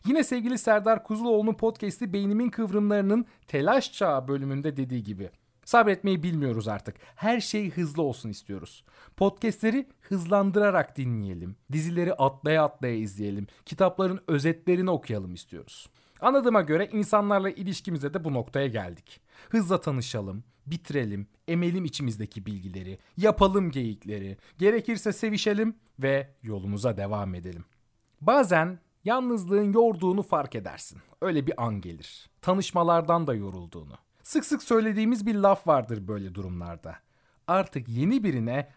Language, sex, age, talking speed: Turkish, male, 40-59, 120 wpm